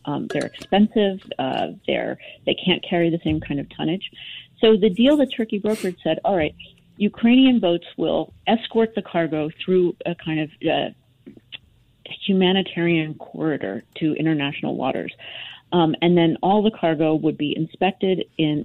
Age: 40-59